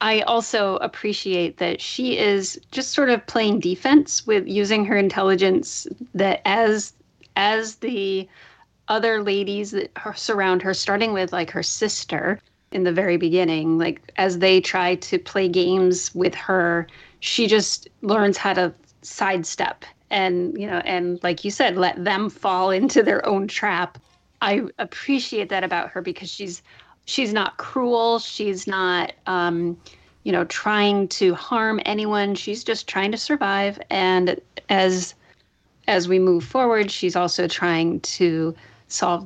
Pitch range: 180-210 Hz